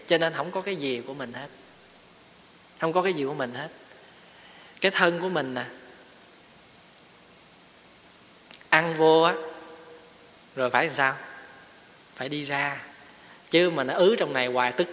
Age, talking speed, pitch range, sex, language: 20-39, 160 wpm, 135-180 Hz, male, Vietnamese